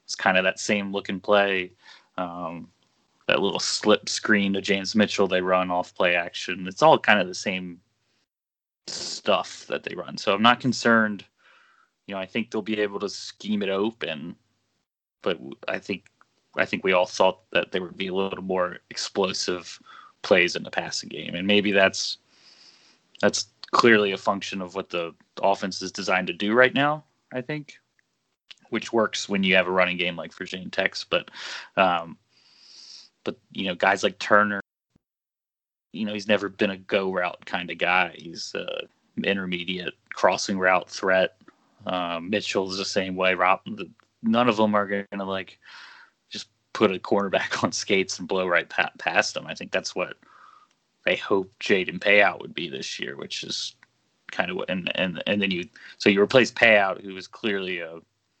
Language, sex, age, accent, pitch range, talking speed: English, male, 20-39, American, 90-105 Hz, 180 wpm